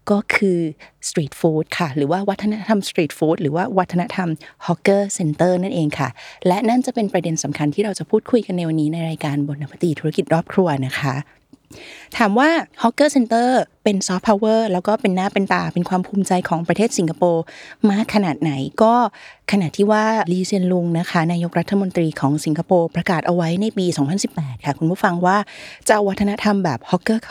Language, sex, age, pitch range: Thai, female, 20-39, 165-205 Hz